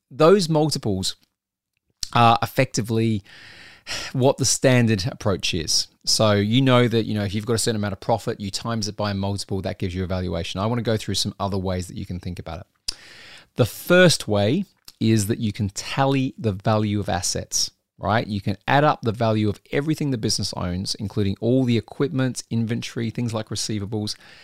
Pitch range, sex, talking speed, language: 100-120 Hz, male, 195 wpm, English